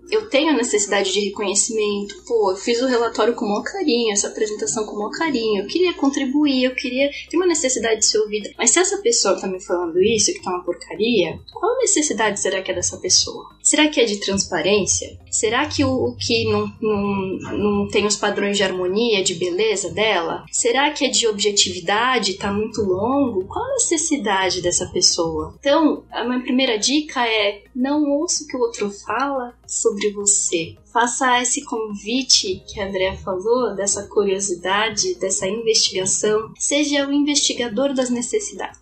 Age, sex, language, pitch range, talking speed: 10-29, female, Portuguese, 200-290 Hz, 180 wpm